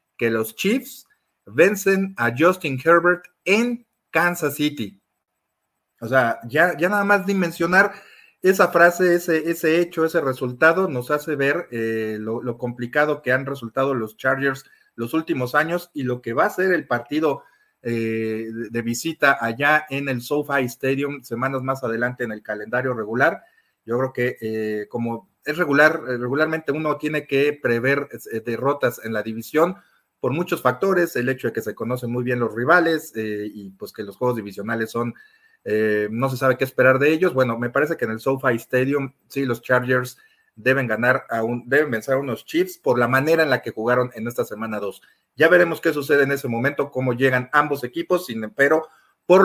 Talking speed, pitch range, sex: 180 wpm, 120-165 Hz, male